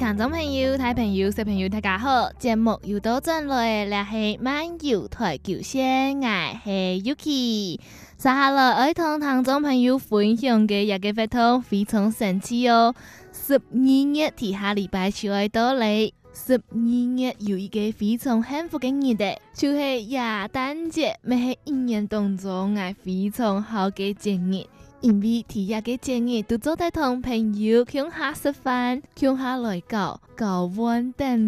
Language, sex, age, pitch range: Chinese, female, 20-39, 205-255 Hz